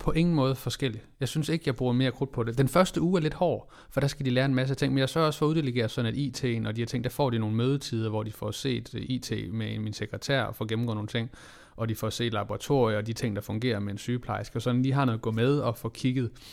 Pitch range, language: 115-135 Hz, Danish